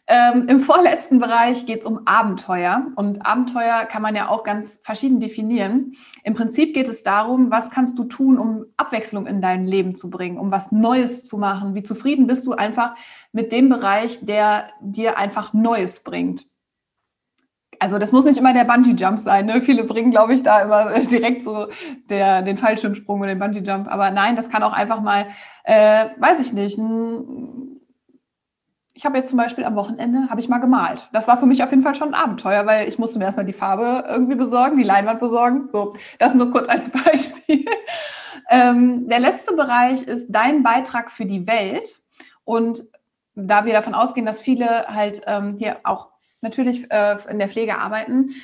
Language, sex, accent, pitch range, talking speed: German, female, German, 210-255 Hz, 185 wpm